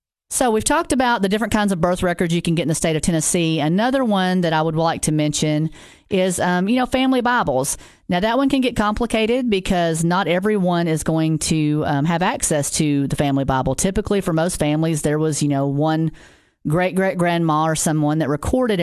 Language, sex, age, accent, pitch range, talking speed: English, female, 40-59, American, 150-195 Hz, 205 wpm